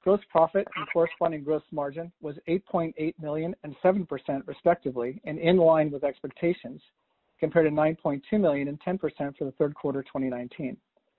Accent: American